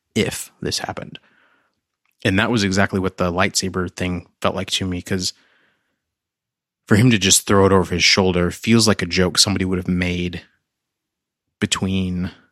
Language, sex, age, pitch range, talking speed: English, male, 30-49, 90-110 Hz, 165 wpm